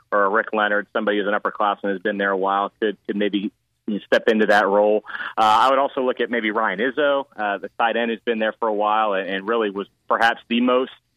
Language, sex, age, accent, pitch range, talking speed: English, male, 30-49, American, 105-125 Hz, 245 wpm